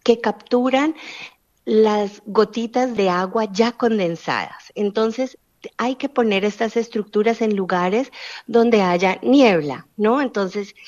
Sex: female